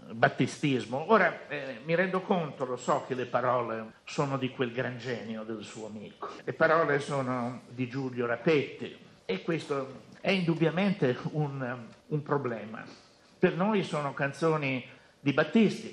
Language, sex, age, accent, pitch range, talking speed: Italian, male, 60-79, native, 130-175 Hz, 145 wpm